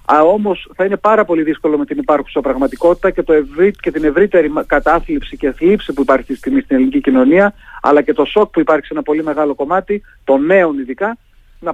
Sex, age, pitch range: male, 40-59, 150-190 Hz